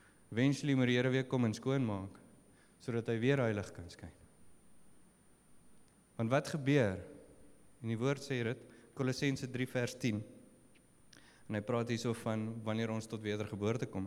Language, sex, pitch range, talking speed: English, male, 105-130 Hz, 160 wpm